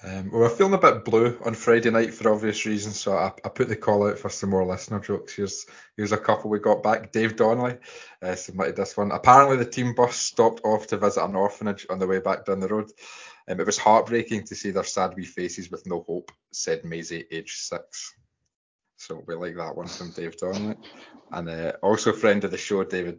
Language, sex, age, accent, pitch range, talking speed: English, male, 20-39, British, 95-120 Hz, 230 wpm